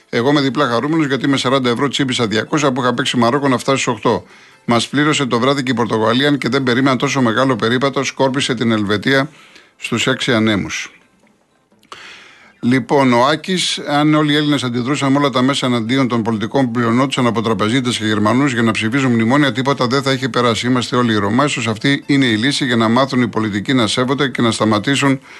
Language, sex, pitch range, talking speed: Greek, male, 115-145 Hz, 195 wpm